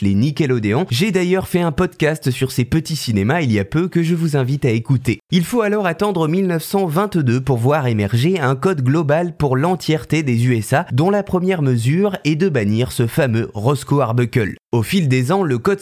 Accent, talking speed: French, 200 wpm